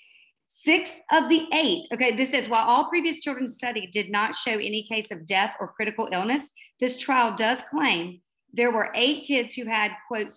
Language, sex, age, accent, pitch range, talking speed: English, female, 40-59, American, 220-280 Hz, 190 wpm